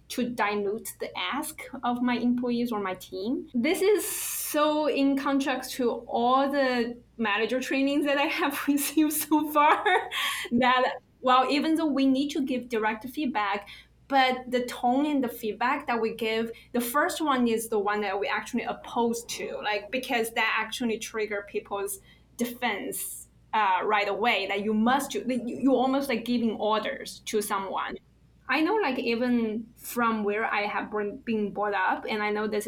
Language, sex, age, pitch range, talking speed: English, female, 10-29, 210-270 Hz, 170 wpm